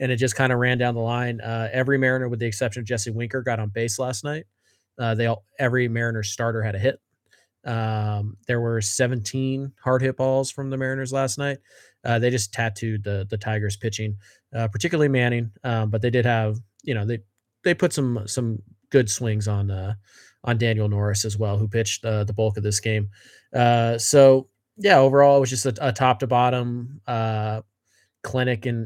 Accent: American